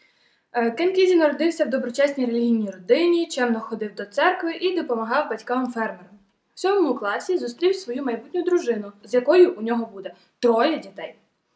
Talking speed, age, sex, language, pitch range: 140 wpm, 20-39, female, Ukrainian, 230-310 Hz